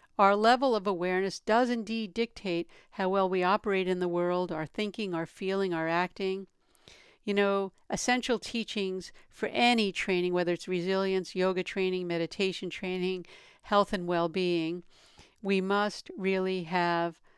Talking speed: 140 wpm